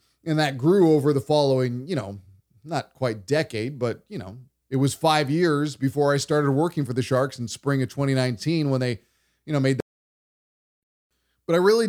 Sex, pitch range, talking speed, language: male, 130-175 Hz, 190 wpm, English